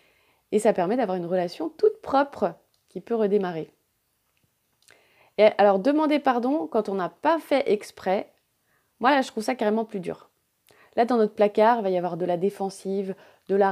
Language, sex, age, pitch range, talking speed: French, female, 20-39, 190-255 Hz, 185 wpm